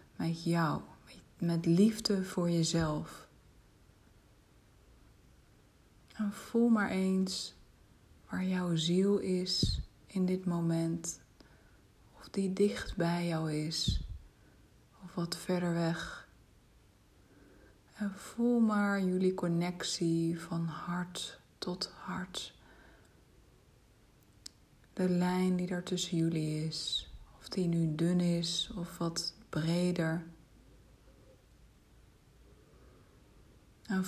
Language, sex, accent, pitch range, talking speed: Dutch, female, Dutch, 165-190 Hz, 90 wpm